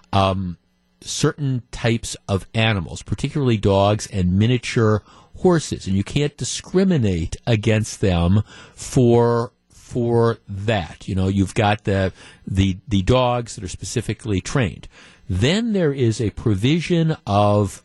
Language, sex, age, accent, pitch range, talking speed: English, male, 50-69, American, 100-140 Hz, 125 wpm